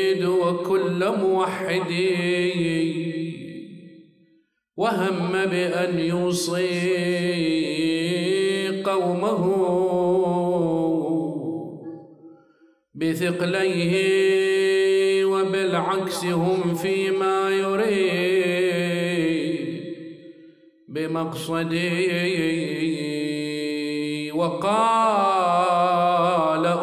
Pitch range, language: 165-190 Hz, Arabic